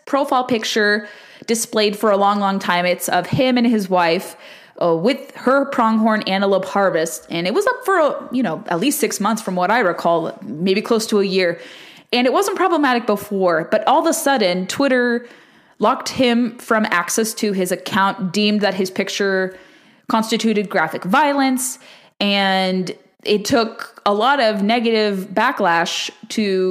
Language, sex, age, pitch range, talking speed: English, female, 20-39, 185-230 Hz, 170 wpm